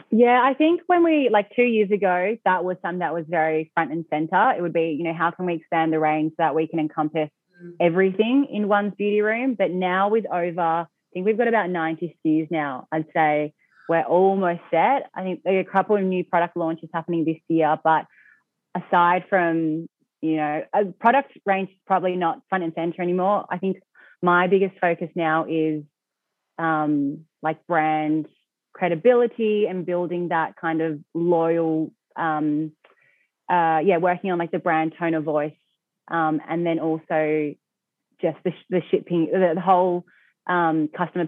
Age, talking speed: 20-39, 180 wpm